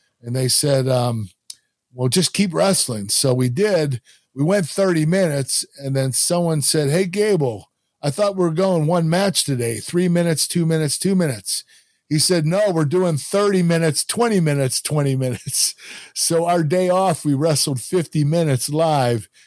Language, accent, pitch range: English, American, 125-165 Hz